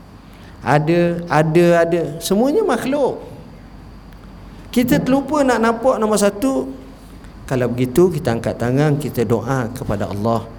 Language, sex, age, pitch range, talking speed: Malay, male, 50-69, 120-205 Hz, 115 wpm